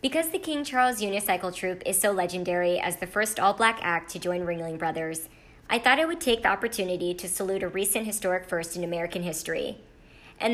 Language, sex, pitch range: English, male, 175-225 Hz